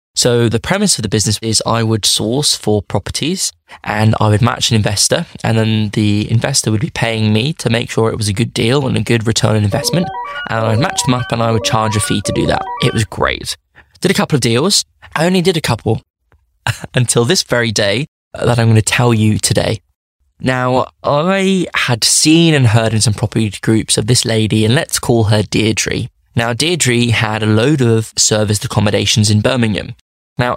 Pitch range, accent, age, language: 105-125 Hz, British, 10-29, English